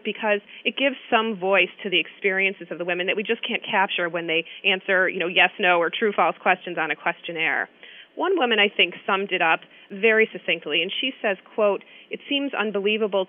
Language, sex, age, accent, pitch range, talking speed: English, female, 30-49, American, 180-220 Hz, 205 wpm